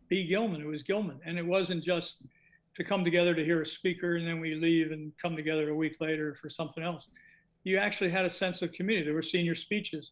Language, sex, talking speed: English, male, 235 wpm